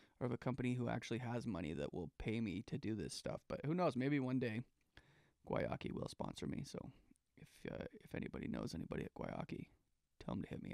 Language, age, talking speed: English, 30-49, 225 wpm